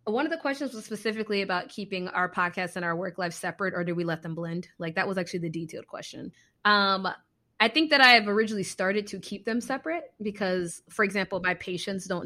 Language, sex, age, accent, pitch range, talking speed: English, female, 20-39, American, 180-220 Hz, 225 wpm